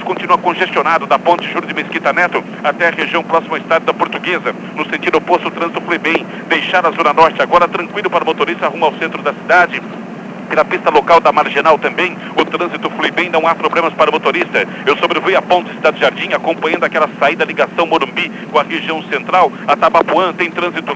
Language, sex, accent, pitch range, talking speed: Portuguese, male, Brazilian, 160-180 Hz, 210 wpm